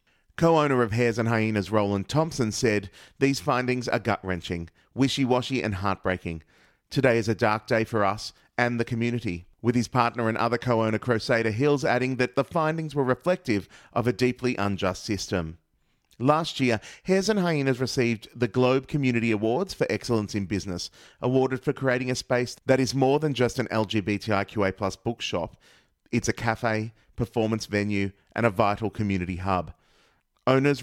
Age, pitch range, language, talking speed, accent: 30-49, 105-130 Hz, English, 160 wpm, Australian